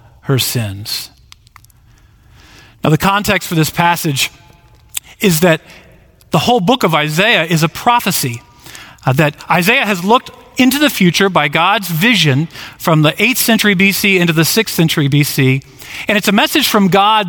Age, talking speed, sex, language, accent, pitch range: 40-59, 155 wpm, male, English, American, 145-205 Hz